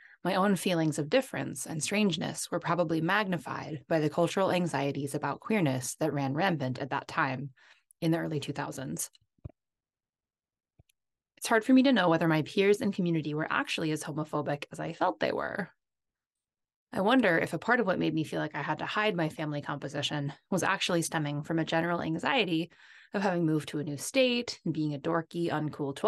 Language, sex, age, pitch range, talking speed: English, female, 20-39, 145-175 Hz, 190 wpm